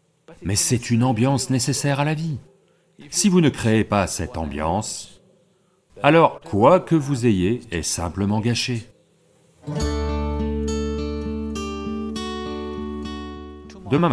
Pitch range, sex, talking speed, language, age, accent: 95-155 Hz, male, 100 wpm, English, 40-59, French